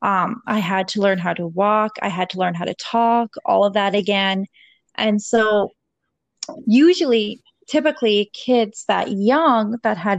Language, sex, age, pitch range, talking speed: English, female, 20-39, 205-250 Hz, 165 wpm